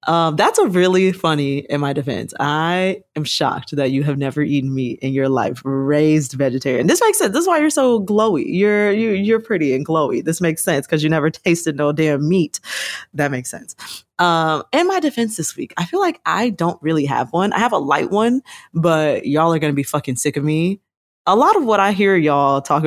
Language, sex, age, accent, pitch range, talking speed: English, female, 20-39, American, 140-195 Hz, 230 wpm